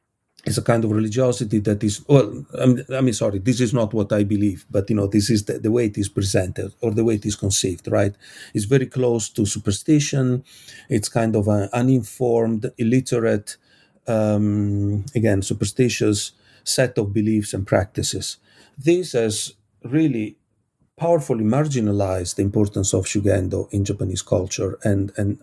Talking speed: 160 wpm